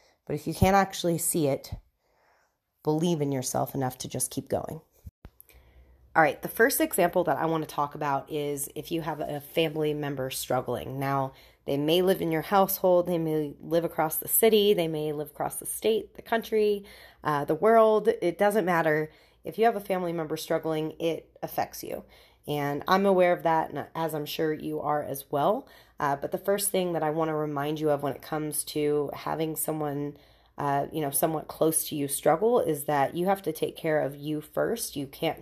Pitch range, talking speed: 145-170 Hz, 205 wpm